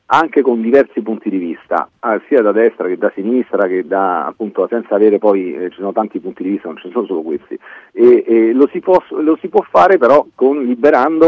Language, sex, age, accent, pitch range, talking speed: Italian, male, 40-59, native, 95-140 Hz, 225 wpm